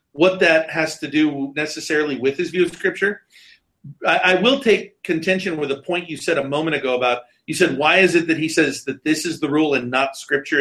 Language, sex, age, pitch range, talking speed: English, male, 40-59, 160-205 Hz, 230 wpm